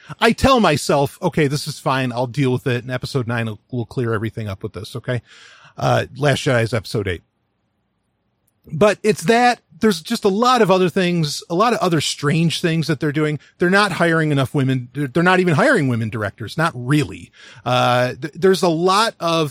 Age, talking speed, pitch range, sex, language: 40-59, 200 wpm, 130-190 Hz, male, English